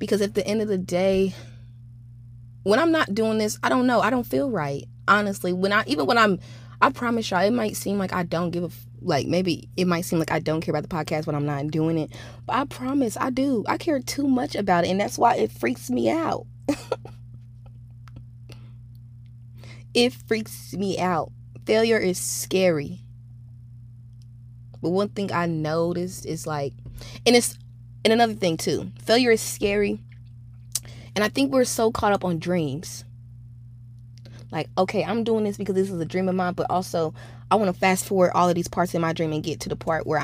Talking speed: 200 wpm